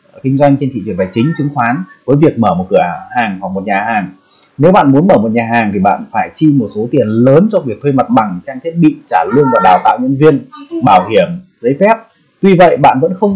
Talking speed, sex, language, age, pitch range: 260 wpm, male, Vietnamese, 20-39, 115-165 Hz